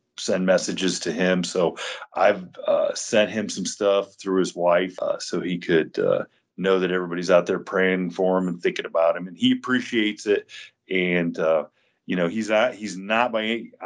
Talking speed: 190 wpm